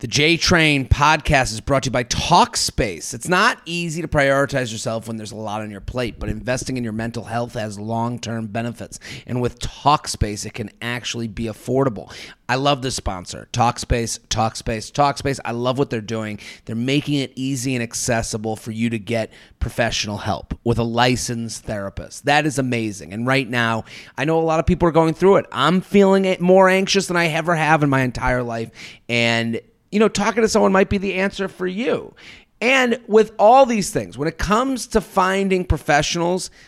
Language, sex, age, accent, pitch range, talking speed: English, male, 30-49, American, 115-185 Hz, 195 wpm